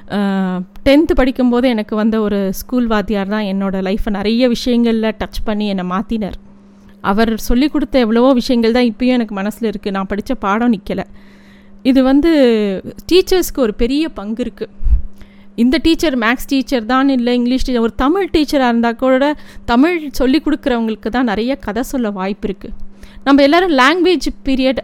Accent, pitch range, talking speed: native, 205-260 Hz, 150 wpm